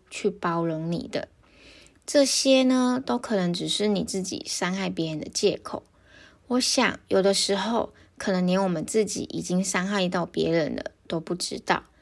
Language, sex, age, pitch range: Chinese, female, 20-39, 175-230 Hz